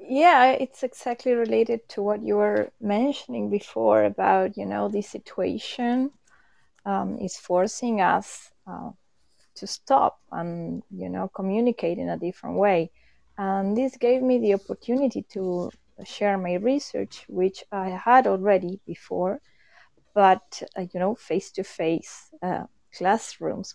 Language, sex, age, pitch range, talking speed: English, female, 20-39, 185-235 Hz, 130 wpm